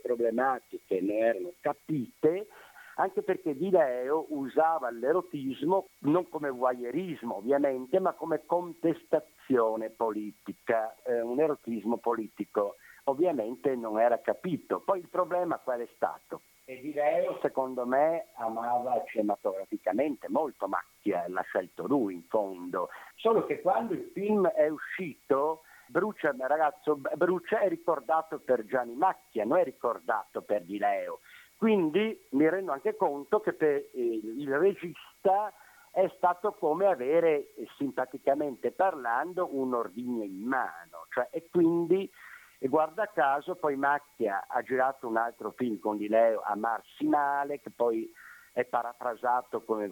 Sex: male